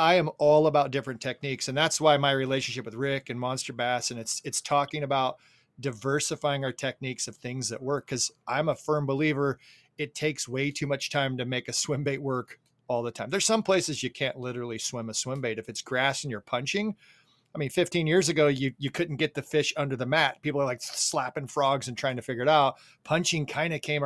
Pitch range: 125-150 Hz